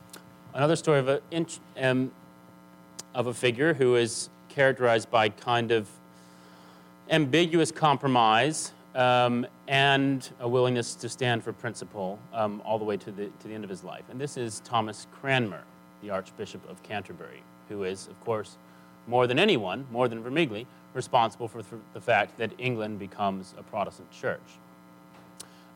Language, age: English, 30-49